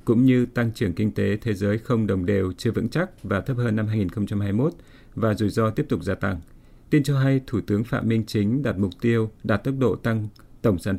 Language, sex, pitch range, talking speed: Vietnamese, male, 100-120 Hz, 235 wpm